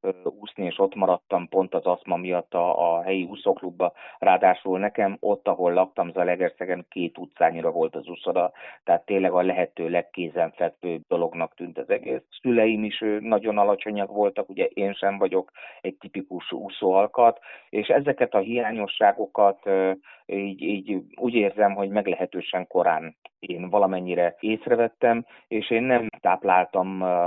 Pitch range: 85-105 Hz